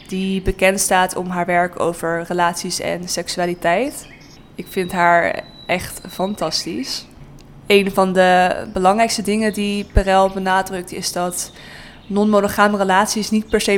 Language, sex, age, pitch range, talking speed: Dutch, female, 20-39, 175-195 Hz, 135 wpm